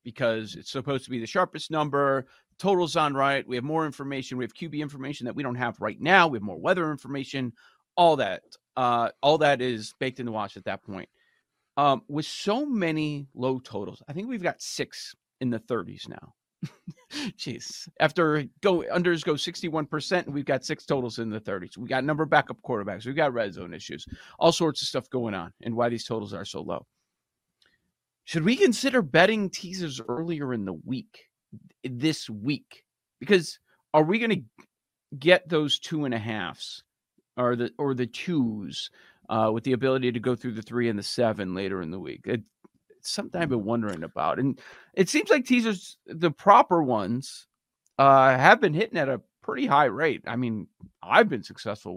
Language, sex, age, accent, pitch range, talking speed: English, male, 40-59, American, 120-165 Hz, 190 wpm